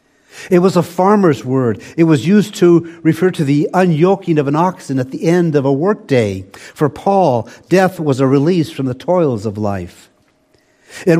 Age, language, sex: 60-79, English, male